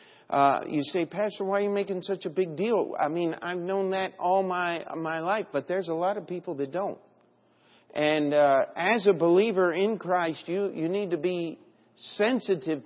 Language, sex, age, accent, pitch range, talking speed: English, male, 50-69, American, 155-200 Hz, 195 wpm